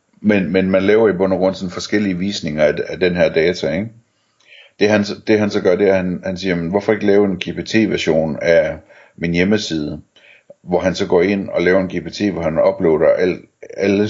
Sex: male